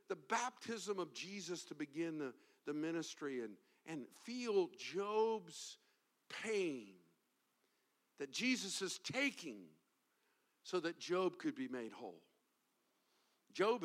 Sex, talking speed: male, 115 wpm